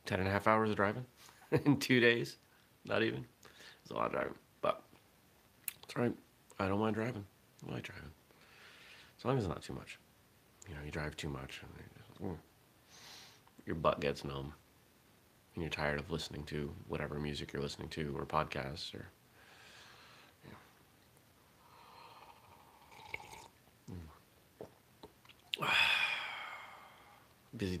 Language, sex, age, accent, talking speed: English, male, 40-59, American, 145 wpm